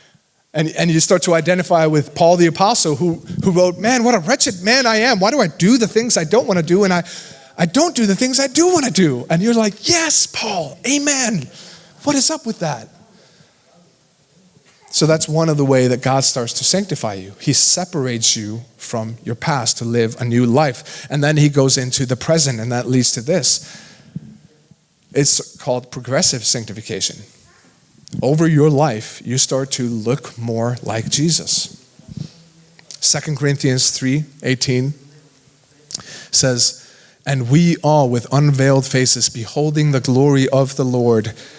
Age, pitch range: 30-49, 120-165 Hz